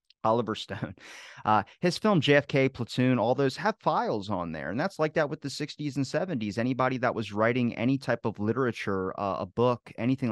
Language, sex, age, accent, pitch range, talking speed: English, male, 30-49, American, 105-140 Hz, 200 wpm